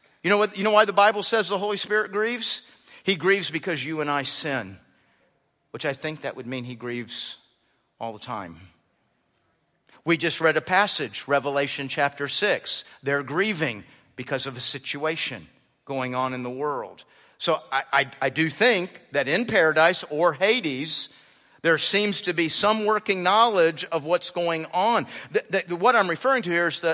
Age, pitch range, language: 50-69, 150-240 Hz, English